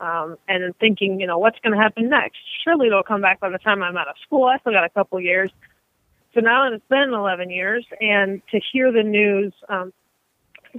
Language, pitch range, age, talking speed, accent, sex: English, 195-230 Hz, 30-49, 240 wpm, American, female